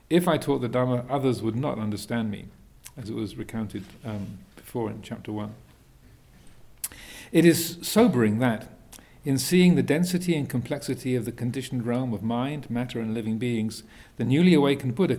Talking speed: 170 wpm